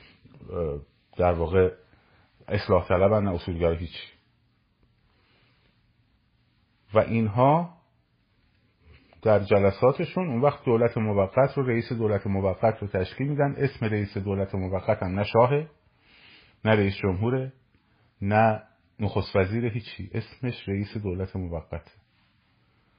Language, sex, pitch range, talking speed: Persian, male, 95-120 Hz, 95 wpm